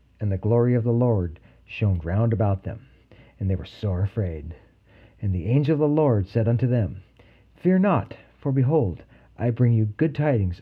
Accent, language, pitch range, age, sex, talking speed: American, English, 95-120 Hz, 50-69, male, 185 wpm